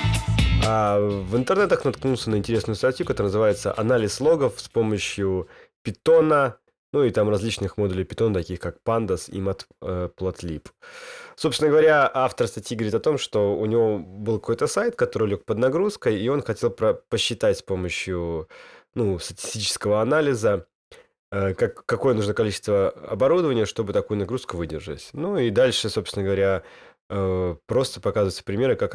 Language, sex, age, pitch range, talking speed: Russian, male, 20-39, 95-125 Hz, 140 wpm